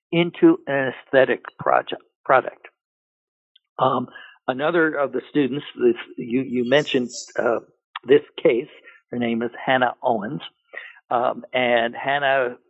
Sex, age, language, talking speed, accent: male, 60-79, English, 120 wpm, American